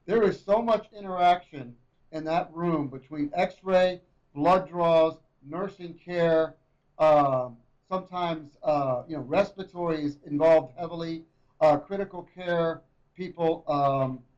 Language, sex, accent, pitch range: English, male, American, 145-180 Hz